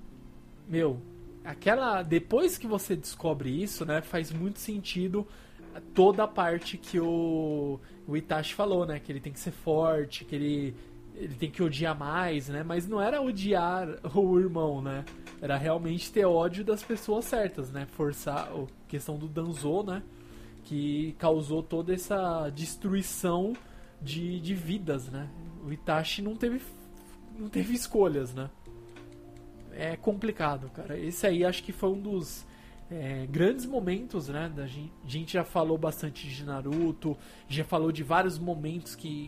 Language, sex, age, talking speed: Portuguese, male, 20-39, 150 wpm